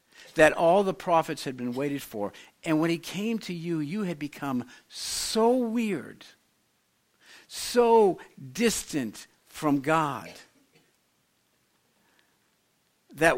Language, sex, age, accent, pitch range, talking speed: English, male, 60-79, American, 140-215 Hz, 110 wpm